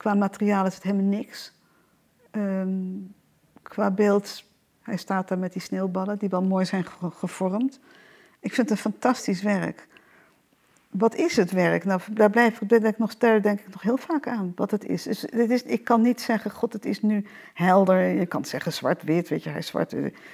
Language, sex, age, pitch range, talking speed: Dutch, female, 50-69, 195-240 Hz, 185 wpm